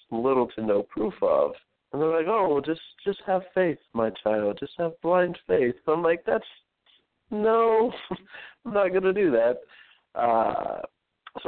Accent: American